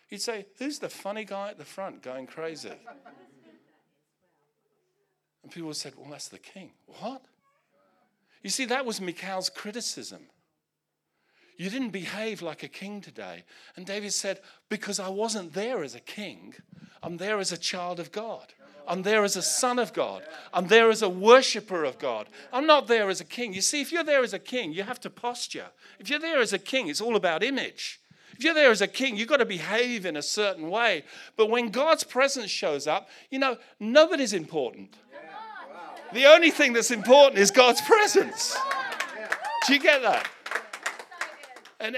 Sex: male